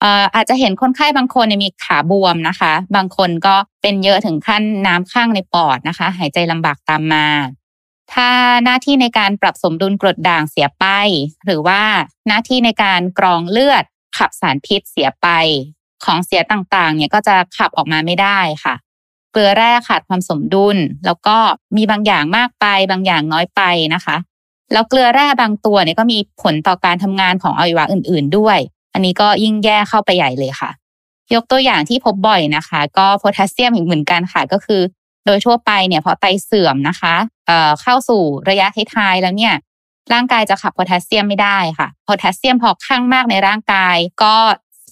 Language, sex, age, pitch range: Thai, female, 20-39, 175-220 Hz